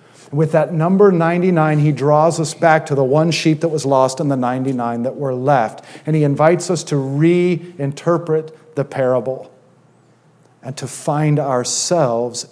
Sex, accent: male, American